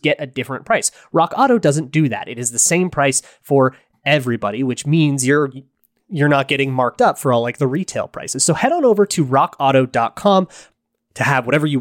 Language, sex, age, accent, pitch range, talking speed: English, male, 30-49, American, 130-165 Hz, 205 wpm